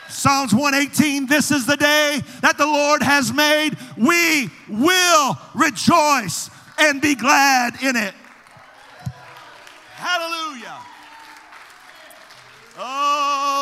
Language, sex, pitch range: English, male, 265-305 Hz